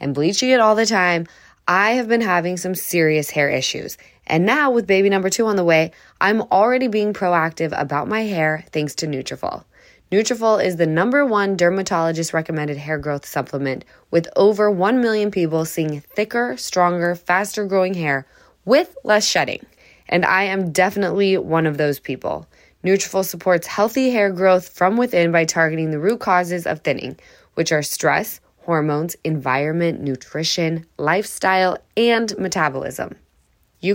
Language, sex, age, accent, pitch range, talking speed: English, female, 10-29, American, 160-205 Hz, 155 wpm